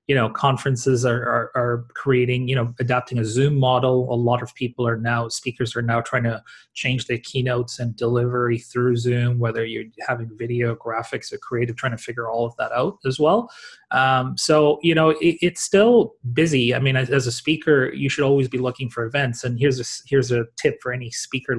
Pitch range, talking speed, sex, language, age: 120-130 Hz, 205 wpm, male, English, 30-49